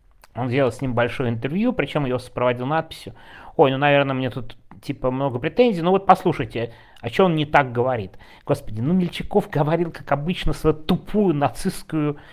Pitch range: 115-165 Hz